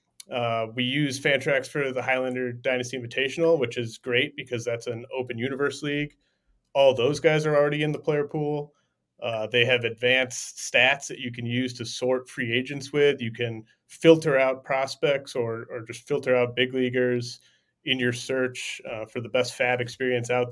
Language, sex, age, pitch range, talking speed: English, male, 30-49, 120-140 Hz, 185 wpm